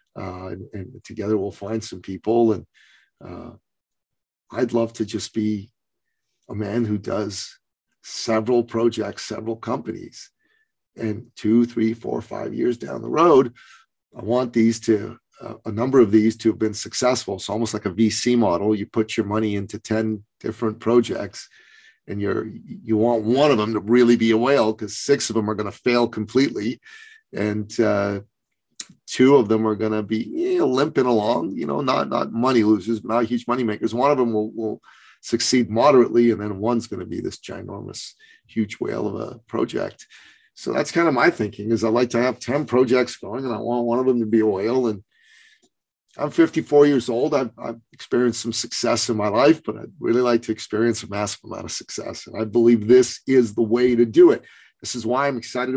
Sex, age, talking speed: male, 40-59, 200 wpm